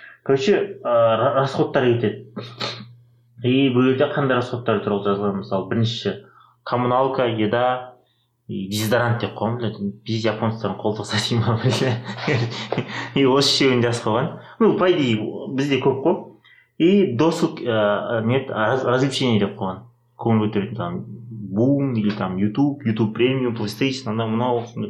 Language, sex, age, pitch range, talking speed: Russian, male, 30-49, 105-130 Hz, 50 wpm